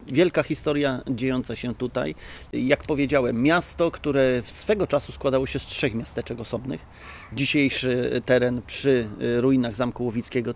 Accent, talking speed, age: native, 135 wpm, 30-49